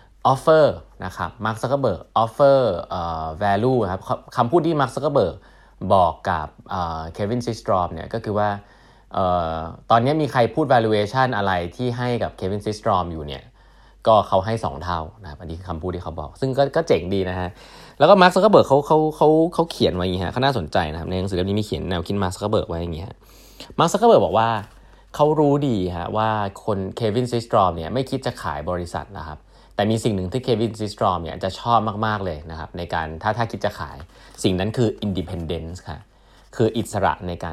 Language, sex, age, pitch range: Thai, male, 20-39, 90-120 Hz